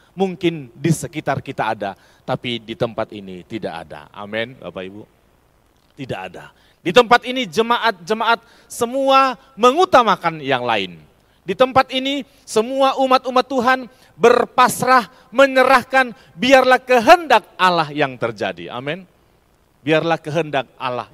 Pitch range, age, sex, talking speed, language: 140-220 Hz, 40-59, male, 115 wpm, Indonesian